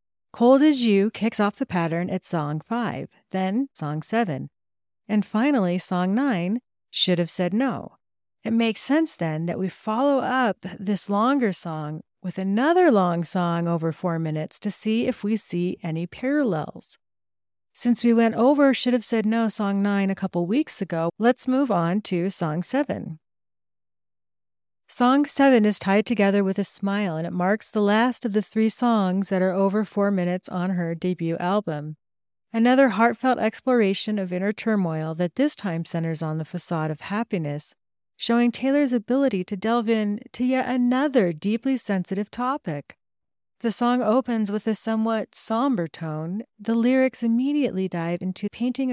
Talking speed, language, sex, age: 165 wpm, English, female, 40-59